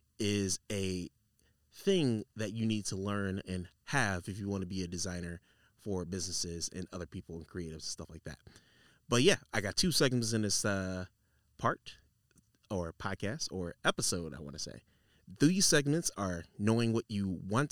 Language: English